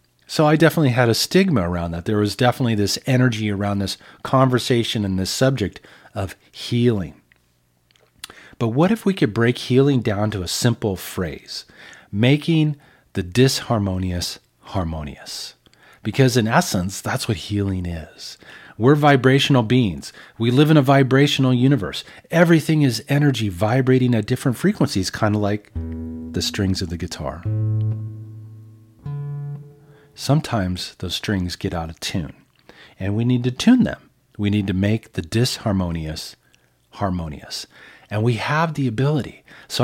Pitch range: 95-130 Hz